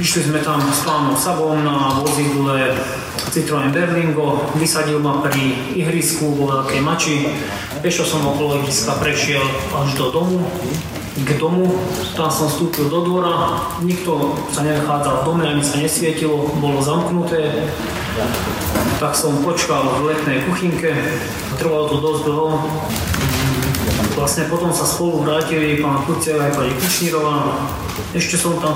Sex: male